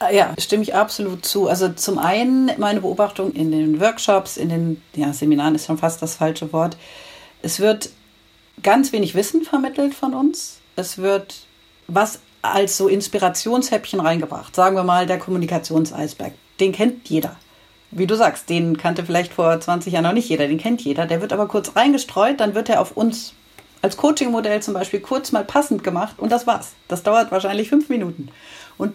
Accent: German